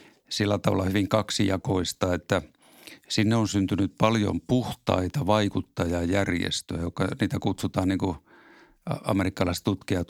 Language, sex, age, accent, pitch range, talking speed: Finnish, male, 50-69, native, 90-105 Hz, 100 wpm